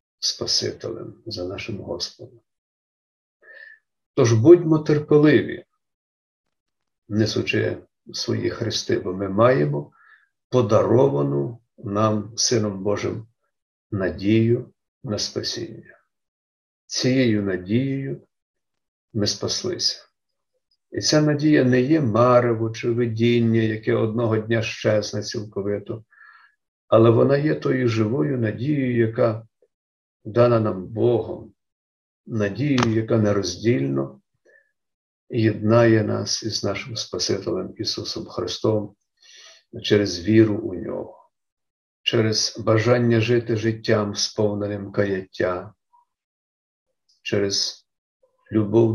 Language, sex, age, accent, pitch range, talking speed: Ukrainian, male, 50-69, native, 100-120 Hz, 85 wpm